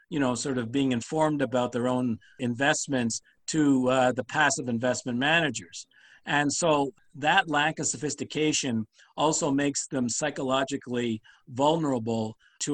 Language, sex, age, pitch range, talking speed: English, male, 50-69, 125-145 Hz, 130 wpm